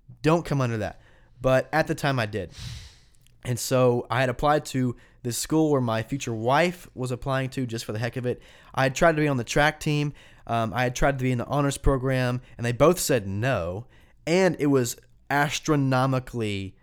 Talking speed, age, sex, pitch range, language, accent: 210 wpm, 20-39, male, 115-145 Hz, English, American